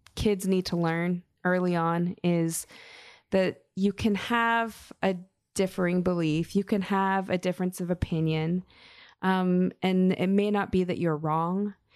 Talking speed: 150 wpm